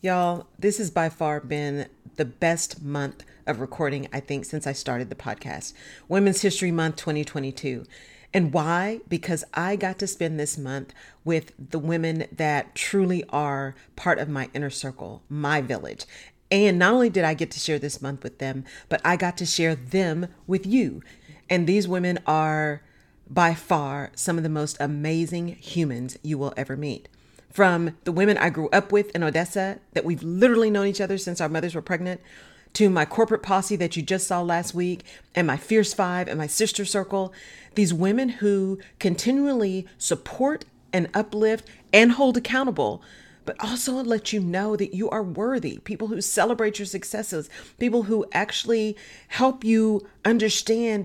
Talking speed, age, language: 175 wpm, 40-59, English